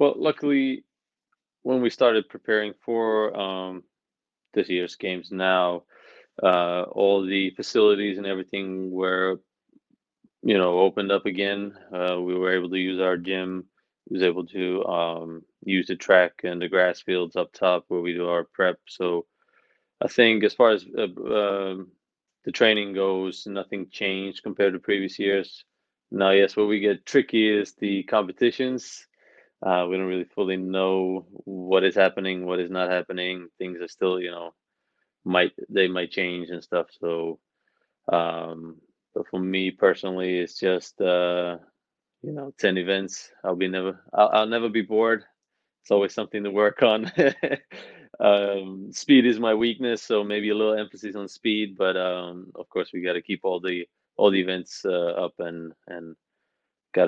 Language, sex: English, male